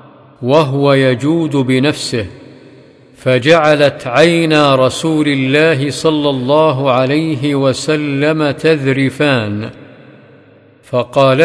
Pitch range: 130-150 Hz